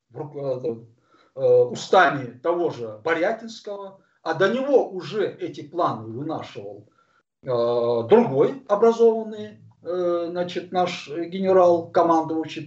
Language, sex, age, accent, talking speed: Russian, male, 50-69, native, 80 wpm